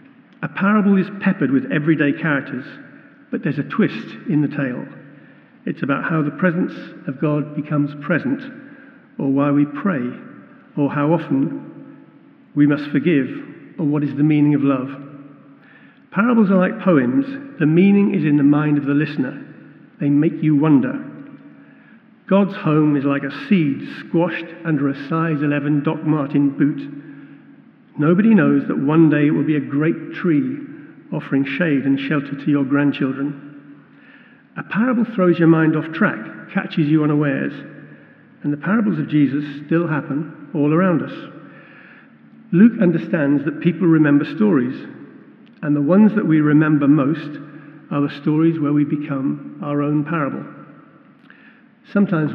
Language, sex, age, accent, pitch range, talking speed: English, male, 50-69, British, 145-195 Hz, 150 wpm